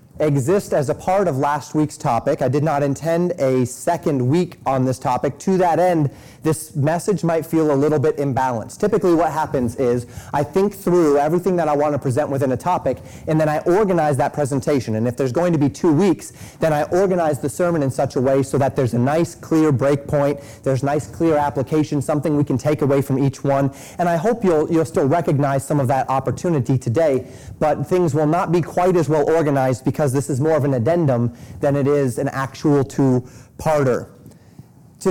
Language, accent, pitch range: English, American, 130-160 Hz